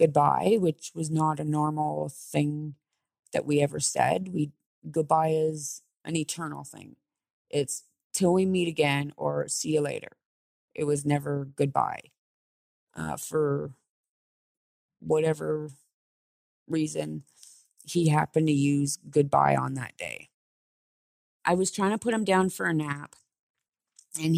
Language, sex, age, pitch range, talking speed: English, female, 30-49, 145-165 Hz, 130 wpm